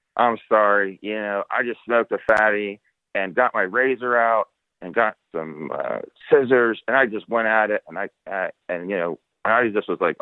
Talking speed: 205 wpm